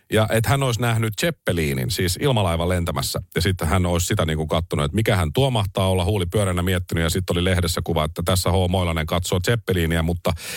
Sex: male